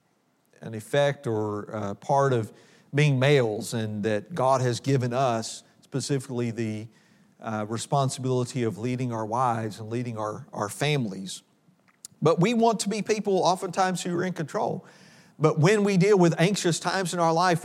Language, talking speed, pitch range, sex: English, 160 wpm, 140-190 Hz, male